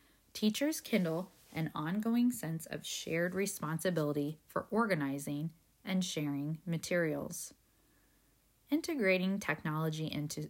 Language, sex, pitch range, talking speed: English, female, 150-210 Hz, 90 wpm